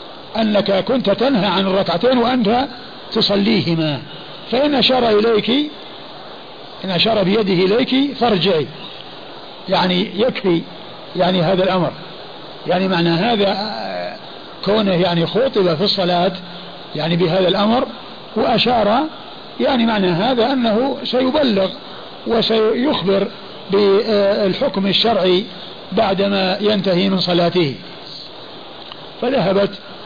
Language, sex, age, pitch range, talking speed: Arabic, male, 50-69, 180-220 Hz, 90 wpm